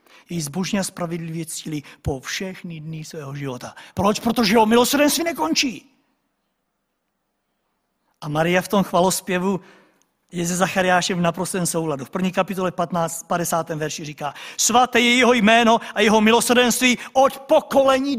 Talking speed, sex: 140 wpm, male